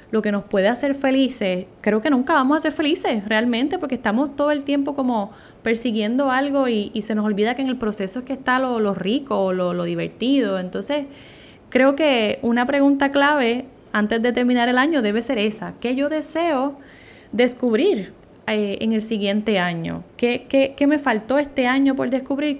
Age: 10-29